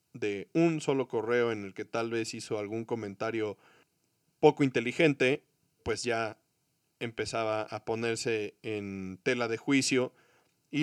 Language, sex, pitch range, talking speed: Spanish, male, 115-140 Hz, 135 wpm